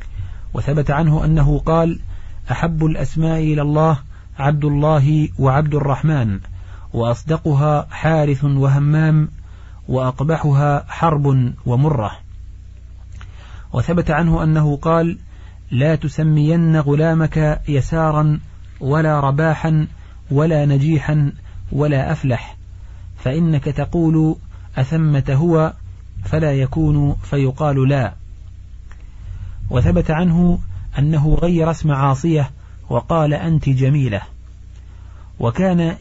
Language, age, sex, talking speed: Arabic, 40-59, male, 85 wpm